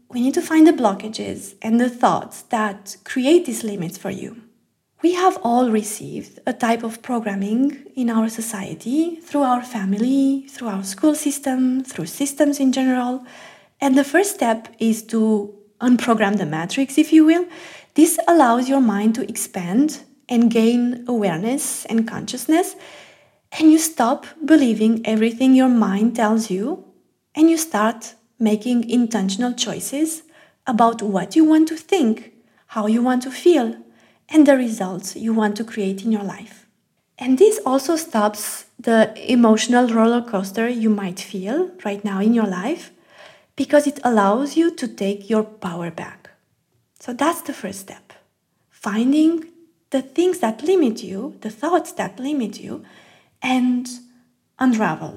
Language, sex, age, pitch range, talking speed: English, female, 20-39, 215-280 Hz, 150 wpm